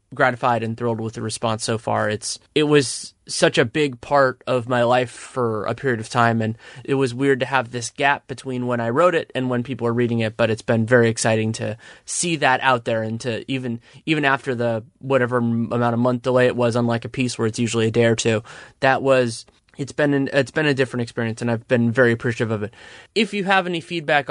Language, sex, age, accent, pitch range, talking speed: English, male, 20-39, American, 115-135 Hz, 240 wpm